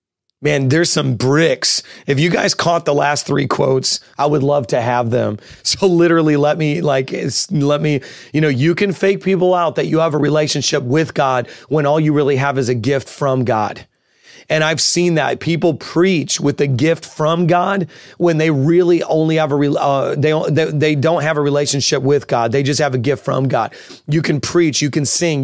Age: 30-49